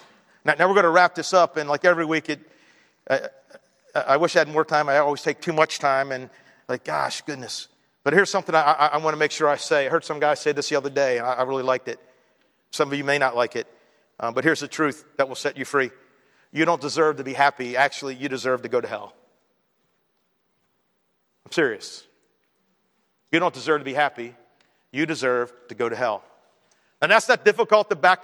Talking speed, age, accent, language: 225 wpm, 50-69, American, English